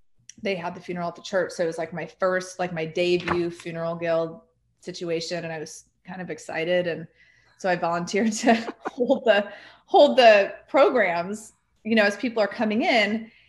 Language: English